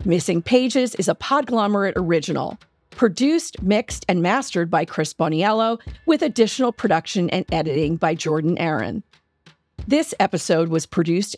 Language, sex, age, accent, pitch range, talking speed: English, female, 40-59, American, 165-225 Hz, 130 wpm